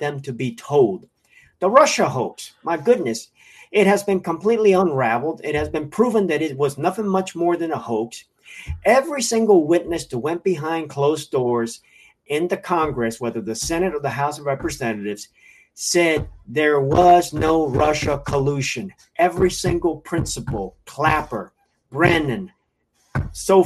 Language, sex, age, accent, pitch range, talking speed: English, male, 50-69, American, 140-190 Hz, 145 wpm